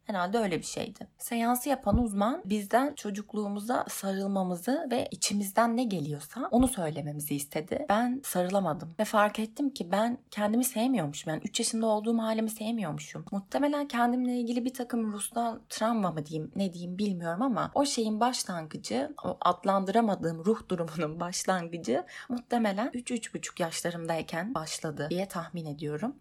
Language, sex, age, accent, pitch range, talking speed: Turkish, female, 30-49, native, 170-230 Hz, 140 wpm